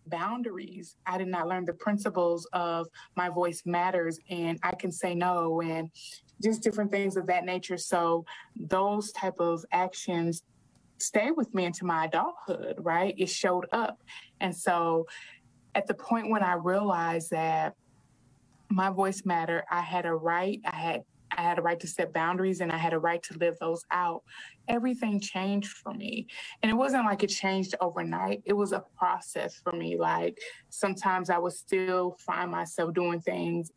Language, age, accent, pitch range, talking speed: English, 20-39, American, 165-190 Hz, 175 wpm